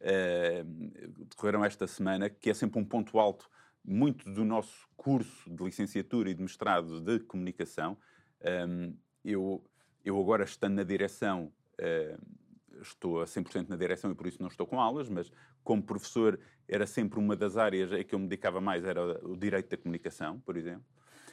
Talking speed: 175 wpm